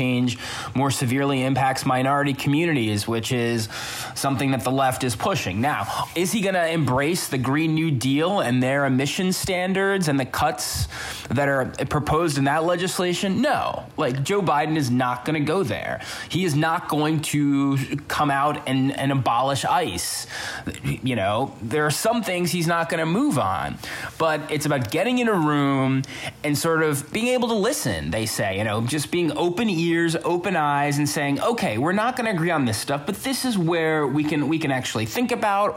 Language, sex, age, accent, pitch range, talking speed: English, male, 20-39, American, 135-175 Hz, 195 wpm